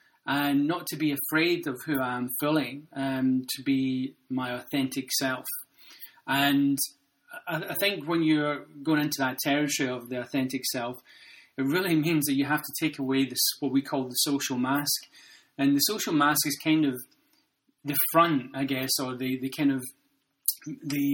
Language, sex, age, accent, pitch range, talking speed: English, male, 30-49, British, 135-155 Hz, 180 wpm